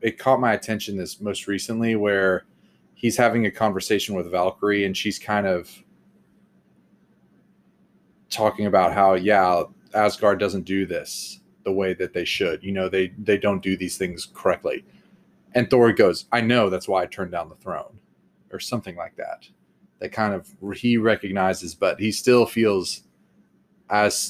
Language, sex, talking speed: English, male, 165 wpm